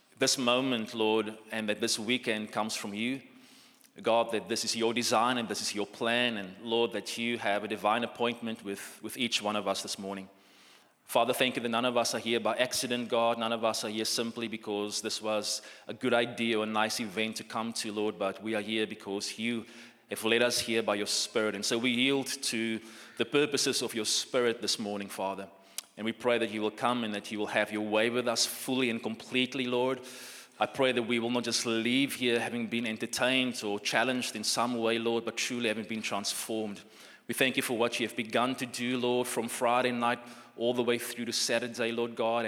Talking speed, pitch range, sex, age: 225 wpm, 110-120 Hz, male, 20-39